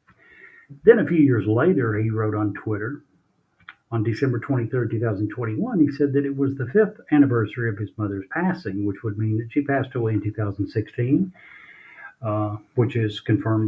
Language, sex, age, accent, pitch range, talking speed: English, male, 50-69, American, 110-135 Hz, 165 wpm